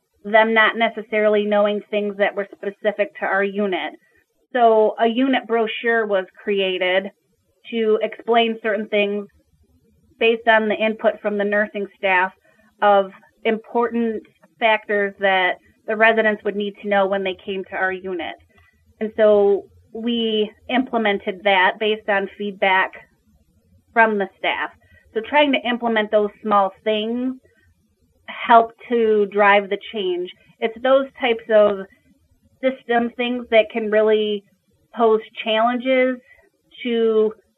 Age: 30-49